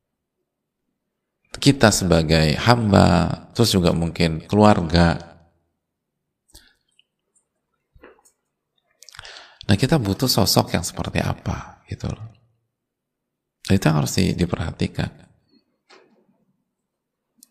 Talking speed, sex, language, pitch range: 65 wpm, male, Indonesian, 85-120 Hz